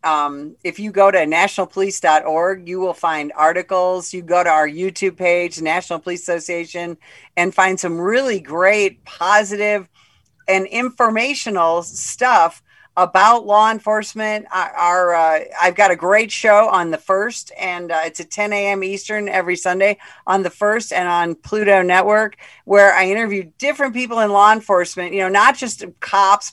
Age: 50-69